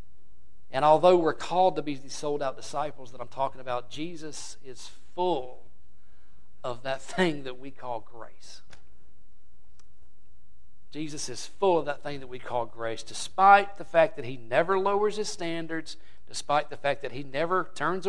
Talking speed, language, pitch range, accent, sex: 165 wpm, English, 125-155 Hz, American, male